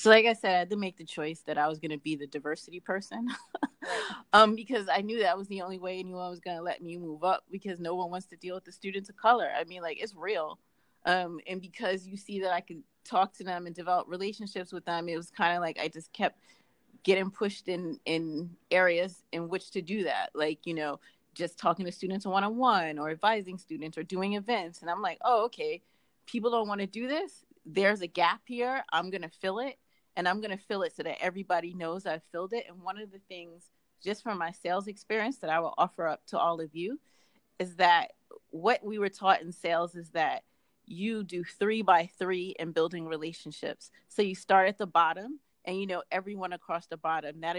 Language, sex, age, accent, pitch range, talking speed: English, female, 30-49, American, 170-205 Hz, 235 wpm